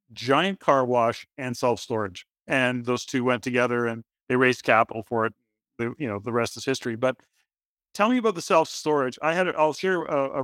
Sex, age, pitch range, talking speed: male, 40-59, 125-145 Hz, 205 wpm